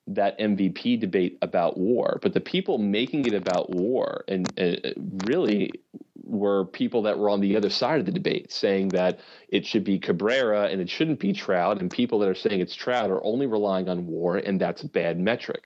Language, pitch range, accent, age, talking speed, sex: English, 95-125 Hz, American, 30-49, 205 wpm, male